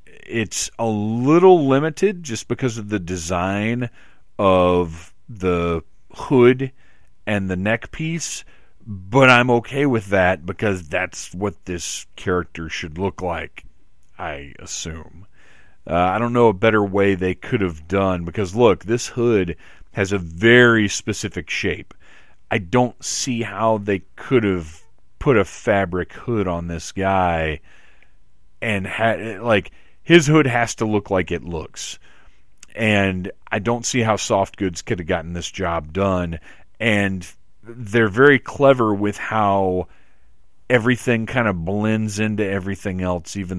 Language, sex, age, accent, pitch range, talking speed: English, male, 40-59, American, 90-120 Hz, 140 wpm